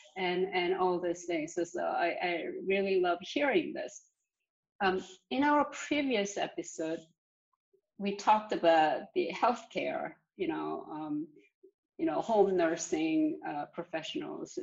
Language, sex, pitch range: English, female, 190-315 Hz